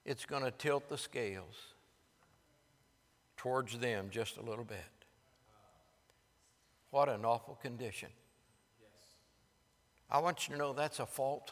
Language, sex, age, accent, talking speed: English, male, 60-79, American, 125 wpm